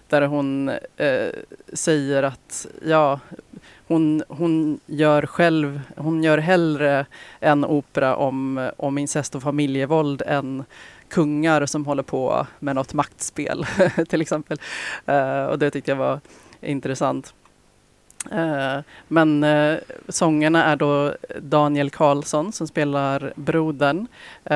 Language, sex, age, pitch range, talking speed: Swedish, female, 30-49, 140-155 Hz, 110 wpm